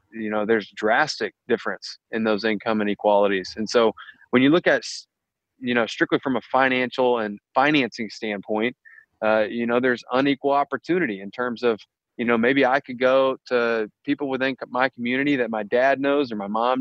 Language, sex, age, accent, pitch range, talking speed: English, male, 20-39, American, 115-135 Hz, 180 wpm